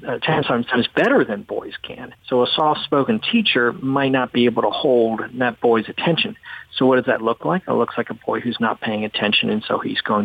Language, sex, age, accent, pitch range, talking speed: English, male, 50-69, American, 115-140 Hz, 225 wpm